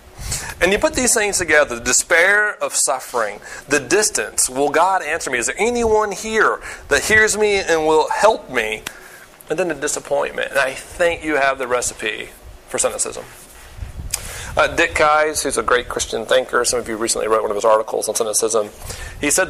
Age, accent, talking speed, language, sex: 30-49, American, 190 wpm, English, male